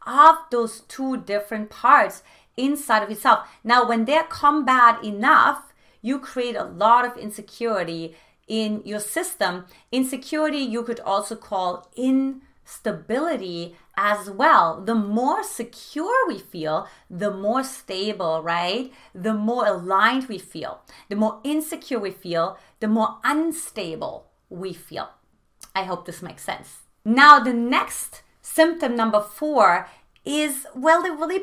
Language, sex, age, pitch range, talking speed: English, female, 30-49, 195-275 Hz, 130 wpm